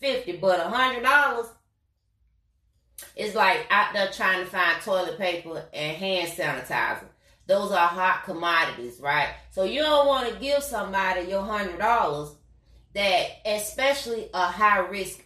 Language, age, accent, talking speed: English, 30-49, American, 125 wpm